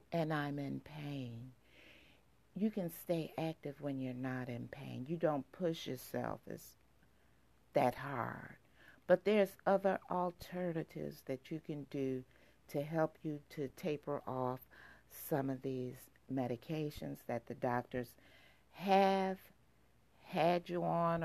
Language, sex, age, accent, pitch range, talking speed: English, female, 50-69, American, 130-185 Hz, 125 wpm